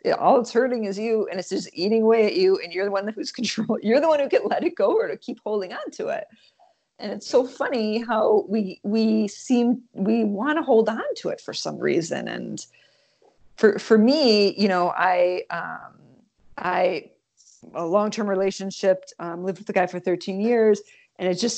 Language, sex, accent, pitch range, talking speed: English, female, American, 190-240 Hz, 210 wpm